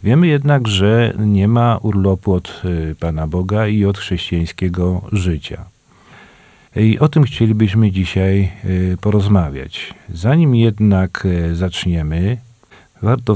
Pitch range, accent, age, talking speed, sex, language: 95-110 Hz, native, 40-59, 105 wpm, male, Polish